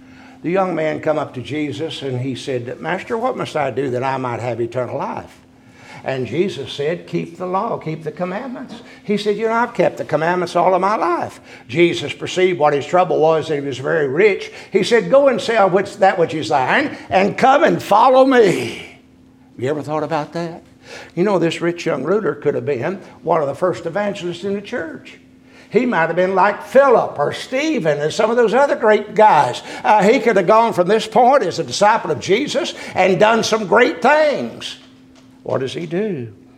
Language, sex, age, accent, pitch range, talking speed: English, male, 60-79, American, 140-220 Hz, 210 wpm